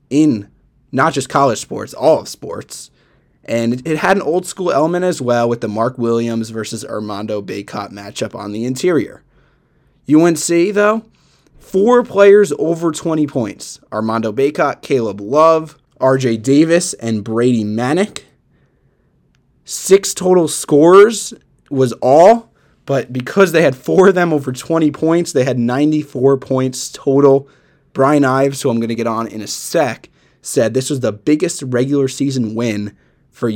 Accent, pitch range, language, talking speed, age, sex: American, 115-150 Hz, English, 150 wpm, 20-39, male